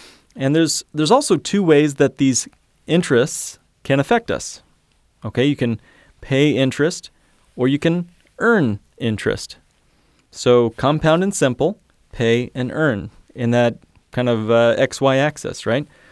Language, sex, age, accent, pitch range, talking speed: English, male, 30-49, American, 115-155 Hz, 140 wpm